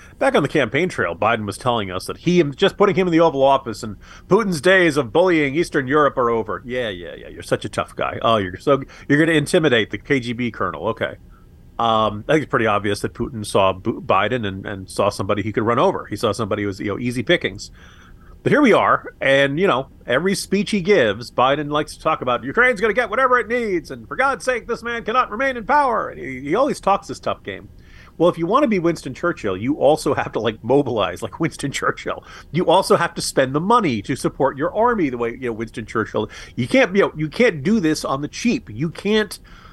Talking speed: 245 wpm